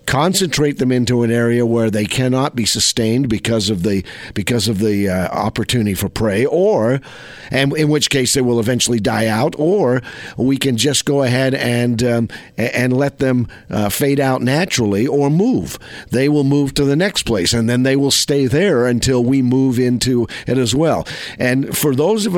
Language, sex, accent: English, male, American